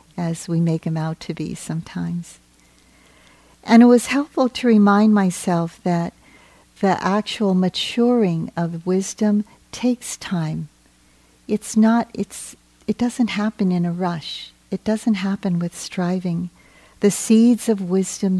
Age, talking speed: 50-69, 135 wpm